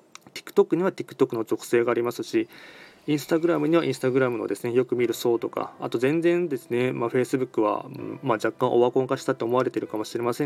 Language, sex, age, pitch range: Japanese, male, 20-39, 120-170 Hz